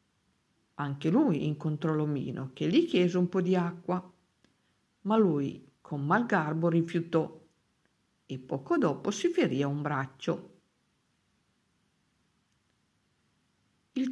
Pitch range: 150-185 Hz